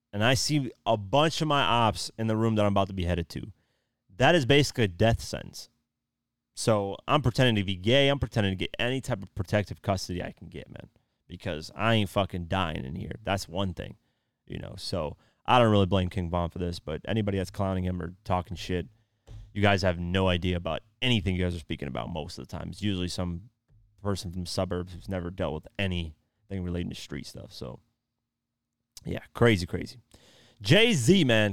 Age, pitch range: 30-49, 90-115 Hz